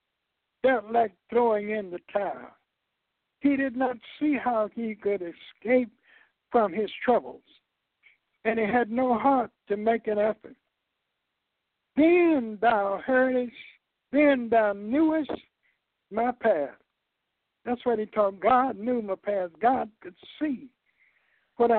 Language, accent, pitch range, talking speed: English, American, 215-260 Hz, 125 wpm